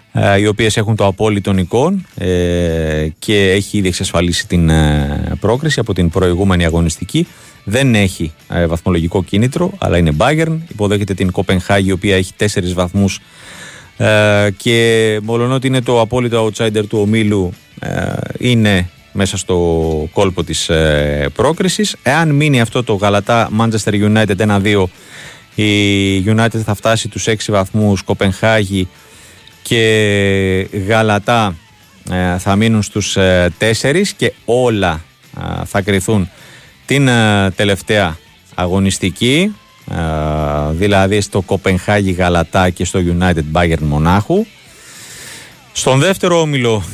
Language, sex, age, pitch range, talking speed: Greek, male, 30-49, 90-110 Hz, 110 wpm